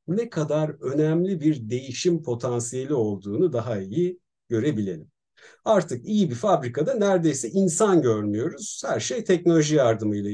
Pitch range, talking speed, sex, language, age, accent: 120-180 Hz, 120 wpm, male, Turkish, 50-69, native